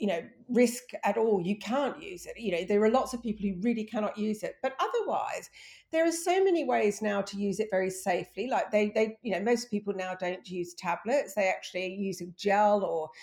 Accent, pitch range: British, 205-300 Hz